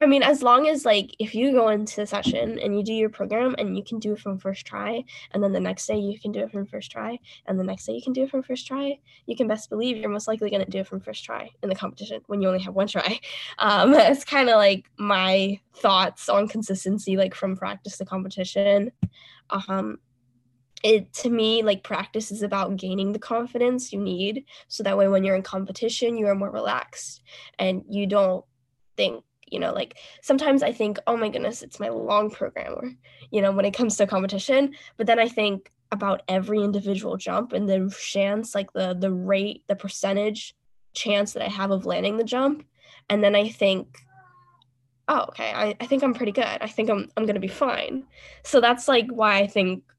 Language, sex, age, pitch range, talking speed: English, female, 10-29, 195-230 Hz, 220 wpm